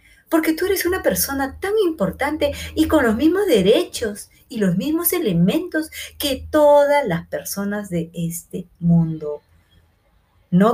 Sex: female